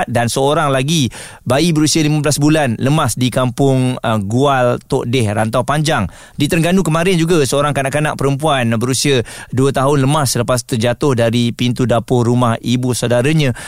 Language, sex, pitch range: Malay, male, 115-145 Hz